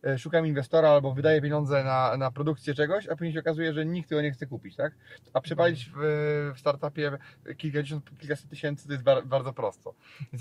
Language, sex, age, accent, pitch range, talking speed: Polish, male, 30-49, native, 130-150 Hz, 195 wpm